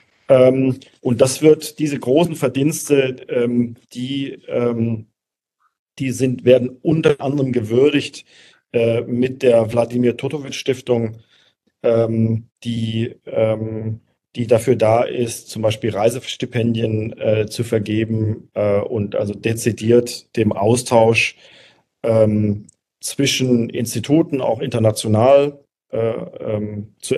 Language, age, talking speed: German, 40-59, 80 wpm